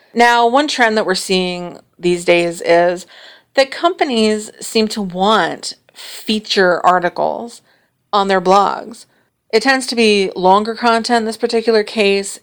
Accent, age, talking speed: American, 40-59, 140 wpm